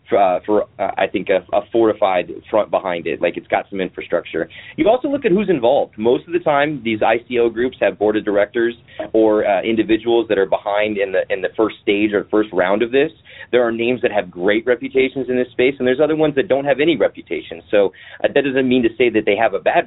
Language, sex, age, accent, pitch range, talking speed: English, male, 30-49, American, 105-155 Hz, 245 wpm